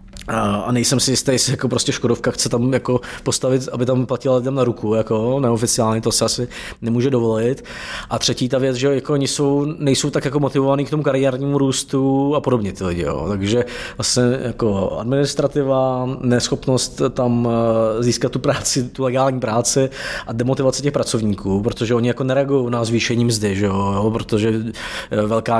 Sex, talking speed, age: male, 170 wpm, 20-39